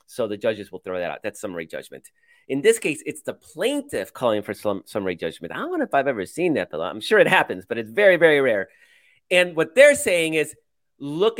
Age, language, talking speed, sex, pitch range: 30-49, English, 235 wpm, male, 125-175 Hz